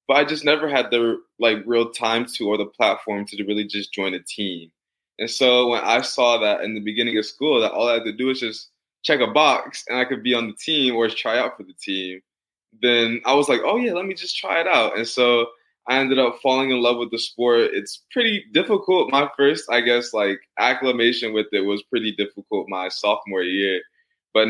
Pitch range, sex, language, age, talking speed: 105-125 Hz, male, English, 20-39, 235 wpm